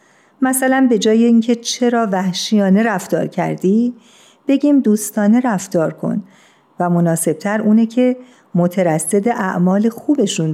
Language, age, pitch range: Persian, 50-69, 175-220 Hz